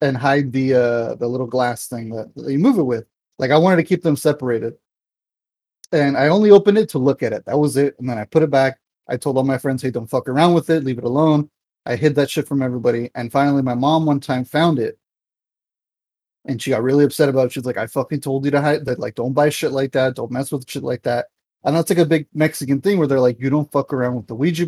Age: 30-49